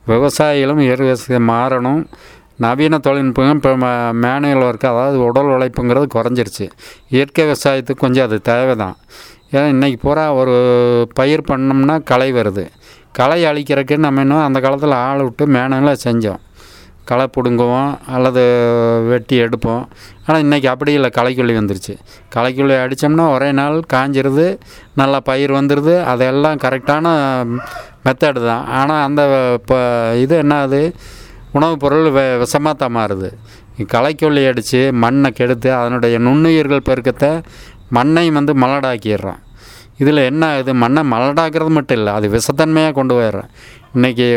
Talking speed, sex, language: 110 wpm, male, English